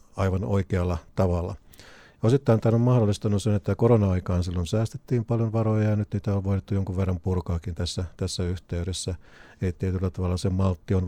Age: 50-69